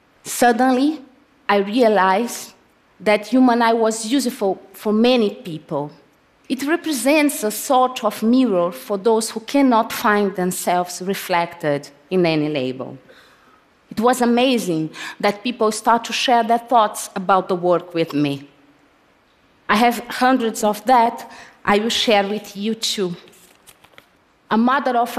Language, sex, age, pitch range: Chinese, female, 30-49, 180-245 Hz